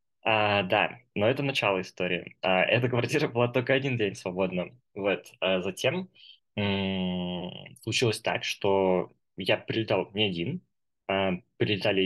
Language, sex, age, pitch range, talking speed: Russian, male, 20-39, 95-115 Hz, 110 wpm